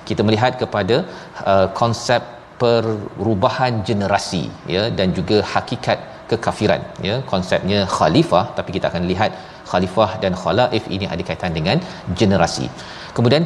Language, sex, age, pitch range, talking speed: Malayalam, male, 40-59, 95-120 Hz, 125 wpm